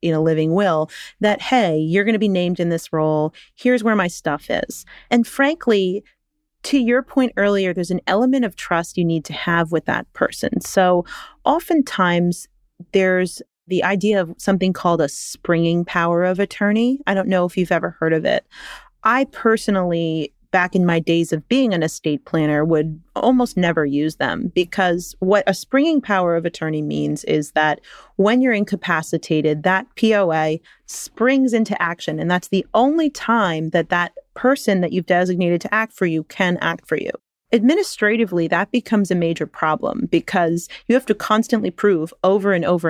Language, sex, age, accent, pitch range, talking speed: English, female, 30-49, American, 165-225 Hz, 175 wpm